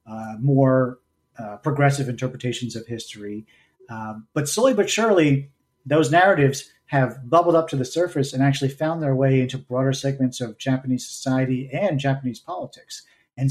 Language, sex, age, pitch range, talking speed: English, male, 40-59, 125-150 Hz, 155 wpm